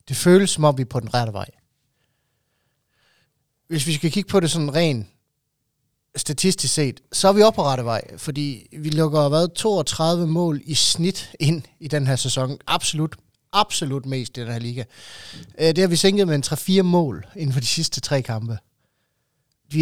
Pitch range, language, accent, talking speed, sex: 130-165 Hz, Danish, native, 190 wpm, male